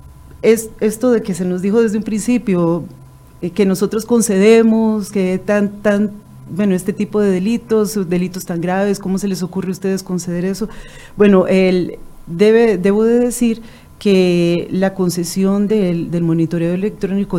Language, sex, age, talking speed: Spanish, female, 40-59, 160 wpm